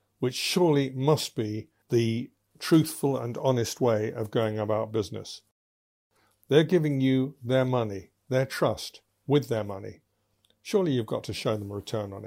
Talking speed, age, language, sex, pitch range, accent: 155 wpm, 60-79, English, male, 110-150 Hz, British